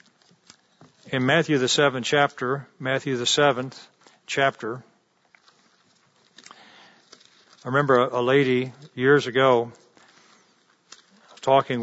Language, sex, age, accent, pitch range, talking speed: English, male, 50-69, American, 130-165 Hz, 80 wpm